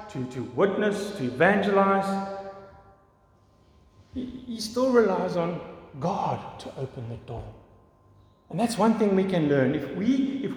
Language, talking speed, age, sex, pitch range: English, 140 wpm, 50-69, male, 155-225 Hz